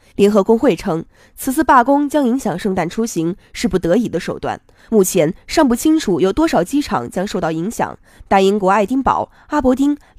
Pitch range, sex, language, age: 175-250 Hz, female, Chinese, 20-39